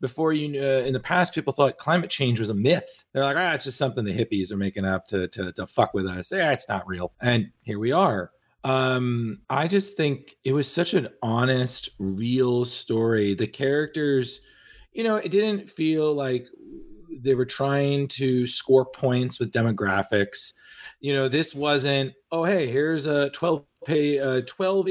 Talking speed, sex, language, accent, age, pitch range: 180 wpm, male, English, American, 30-49, 120-155 Hz